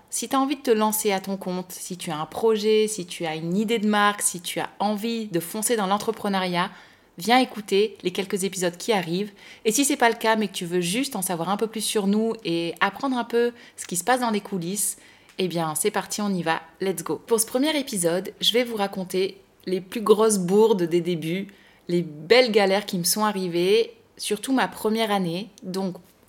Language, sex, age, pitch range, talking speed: French, female, 20-39, 175-220 Hz, 235 wpm